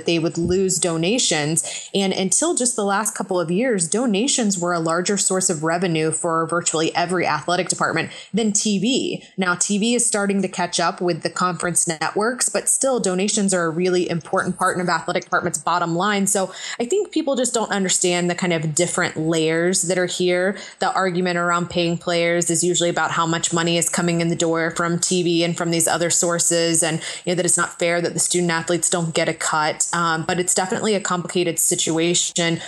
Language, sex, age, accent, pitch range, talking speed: English, female, 20-39, American, 165-185 Hz, 200 wpm